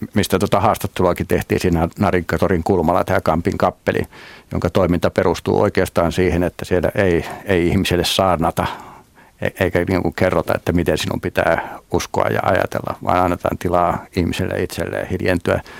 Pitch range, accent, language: 85-95 Hz, native, Finnish